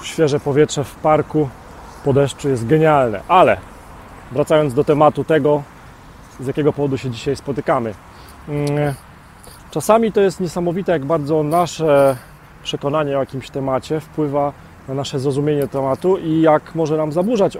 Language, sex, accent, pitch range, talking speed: Polish, male, native, 130-160 Hz, 135 wpm